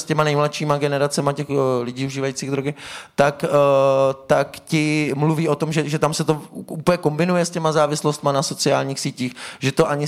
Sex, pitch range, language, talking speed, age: male, 140-155 Hz, Slovak, 190 wpm, 20-39